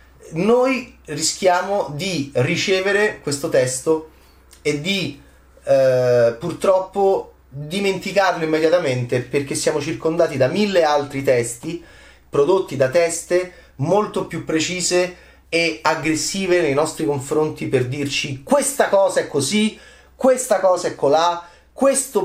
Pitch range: 120-175 Hz